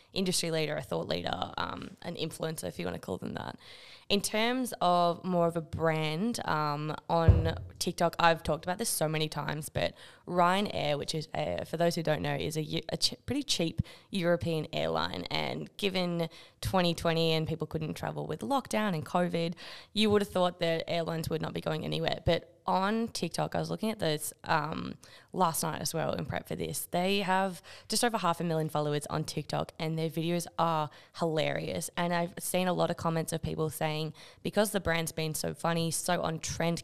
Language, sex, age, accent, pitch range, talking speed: English, female, 20-39, Australian, 155-175 Hz, 200 wpm